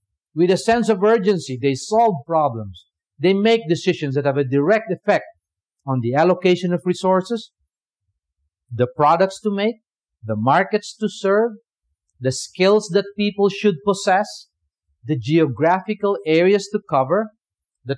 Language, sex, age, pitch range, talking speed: English, male, 50-69, 125-195 Hz, 135 wpm